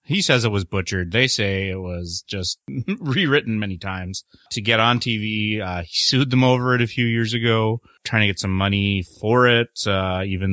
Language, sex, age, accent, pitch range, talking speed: English, male, 30-49, American, 90-115 Hz, 205 wpm